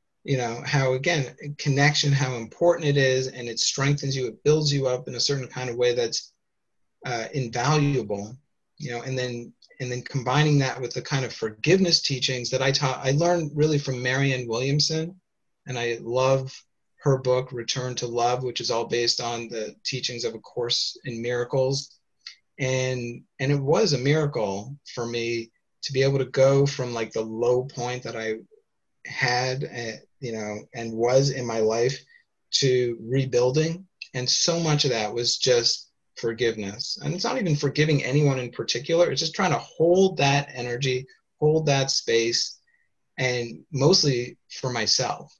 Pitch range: 120-145 Hz